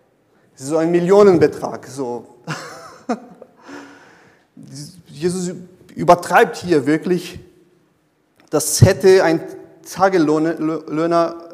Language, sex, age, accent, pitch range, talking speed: German, male, 30-49, German, 150-180 Hz, 75 wpm